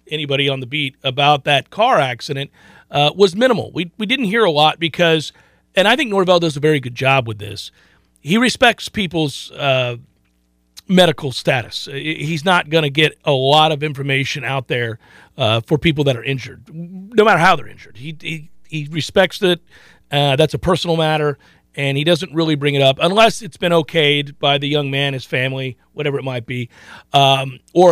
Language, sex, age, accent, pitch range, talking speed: English, male, 40-59, American, 135-175 Hz, 195 wpm